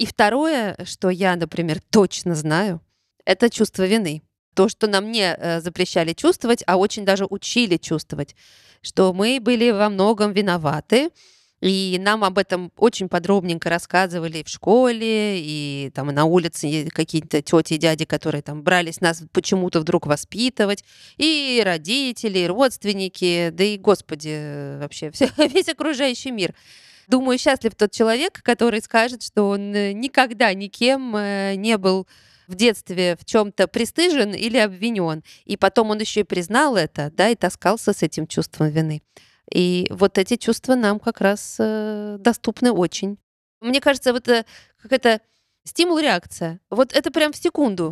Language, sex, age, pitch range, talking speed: Russian, female, 20-39, 175-230 Hz, 145 wpm